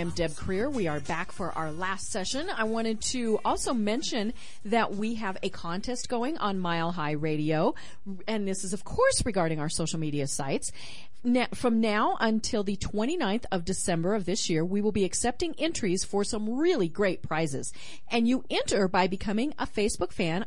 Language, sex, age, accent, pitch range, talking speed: English, female, 40-59, American, 175-235 Hz, 190 wpm